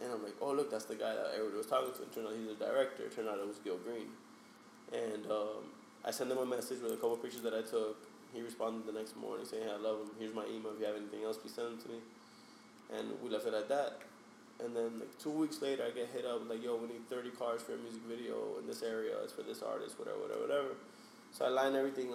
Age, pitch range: 20-39, 115-150 Hz